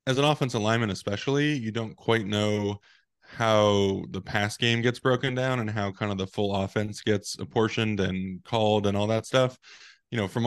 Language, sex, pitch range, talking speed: English, male, 95-110 Hz, 195 wpm